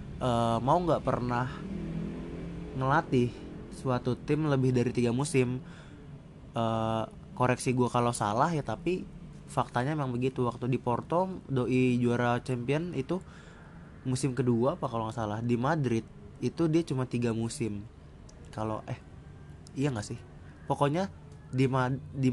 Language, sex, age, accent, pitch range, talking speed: Indonesian, male, 20-39, native, 120-140 Hz, 135 wpm